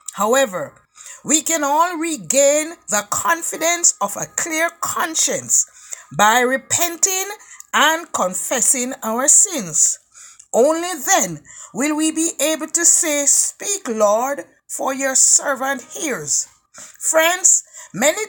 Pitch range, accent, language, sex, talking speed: 245-335 Hz, Nigerian, English, female, 110 wpm